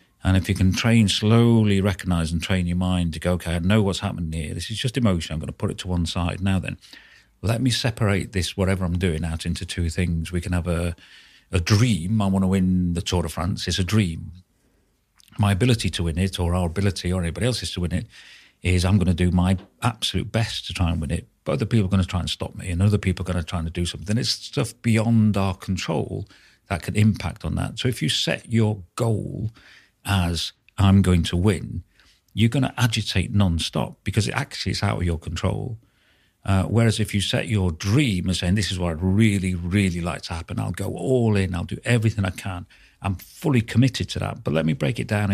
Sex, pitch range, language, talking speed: male, 90-110 Hz, English, 240 wpm